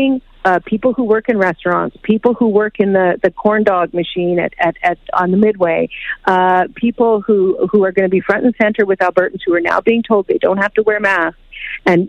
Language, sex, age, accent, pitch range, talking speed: English, female, 40-59, American, 180-215 Hz, 230 wpm